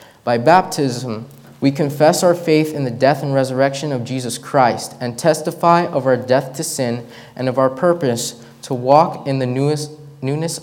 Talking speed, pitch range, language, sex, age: 170 wpm, 120-150 Hz, English, male, 20-39